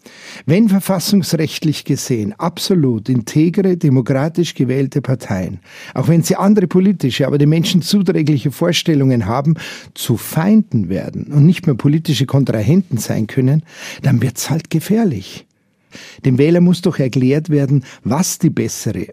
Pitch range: 130-180 Hz